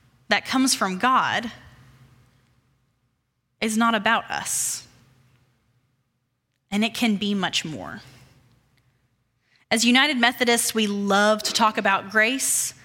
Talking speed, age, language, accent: 105 wpm, 10-29, English, American